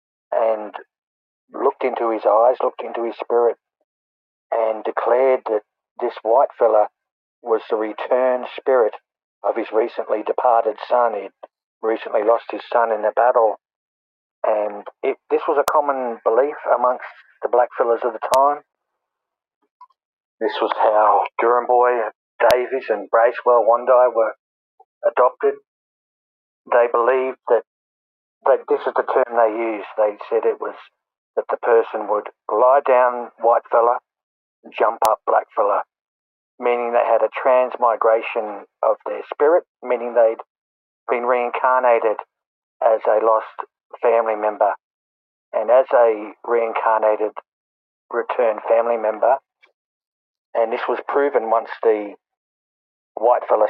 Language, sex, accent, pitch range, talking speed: English, male, Australian, 110-130 Hz, 125 wpm